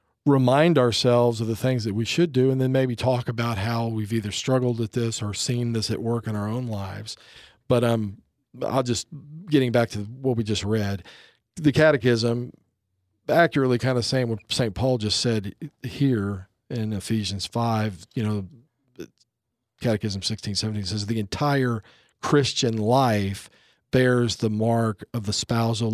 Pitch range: 110-130 Hz